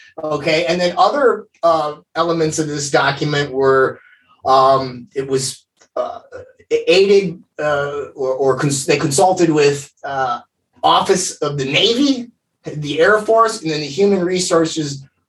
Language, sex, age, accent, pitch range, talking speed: English, male, 20-39, American, 150-205 Hz, 135 wpm